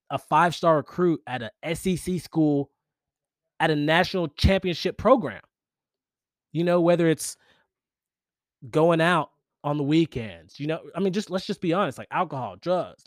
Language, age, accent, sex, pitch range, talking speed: English, 20-39, American, male, 125-160 Hz, 150 wpm